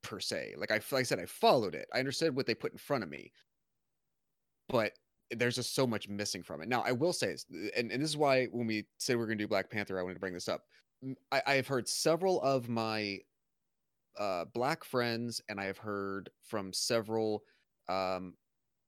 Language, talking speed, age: English, 225 wpm, 30-49